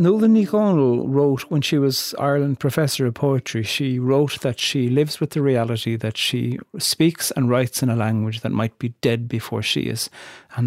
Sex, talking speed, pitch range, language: male, 190 wpm, 115-130 Hz, English